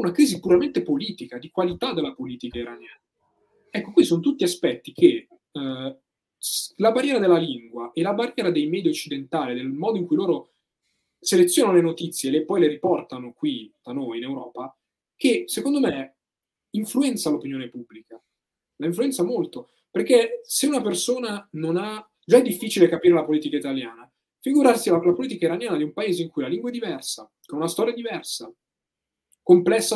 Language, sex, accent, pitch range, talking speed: Italian, male, native, 155-255 Hz, 165 wpm